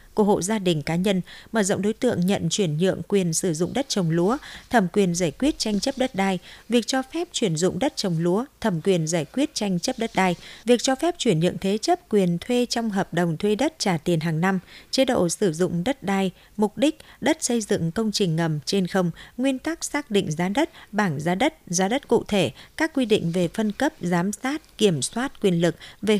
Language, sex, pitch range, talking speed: Vietnamese, female, 180-230 Hz, 235 wpm